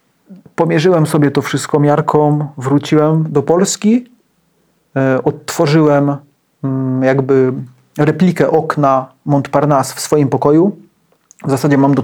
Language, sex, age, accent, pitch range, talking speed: Polish, male, 40-59, native, 135-155 Hz, 100 wpm